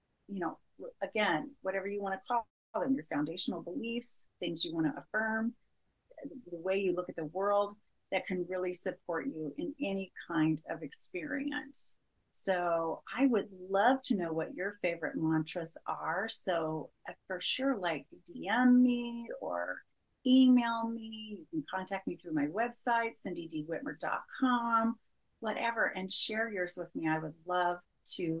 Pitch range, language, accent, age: 175-235 Hz, English, American, 30-49